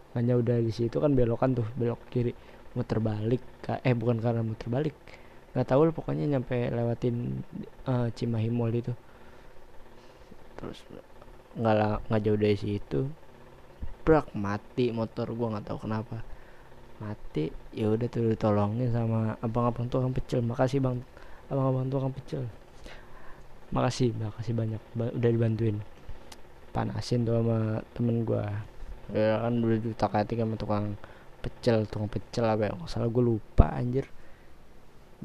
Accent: native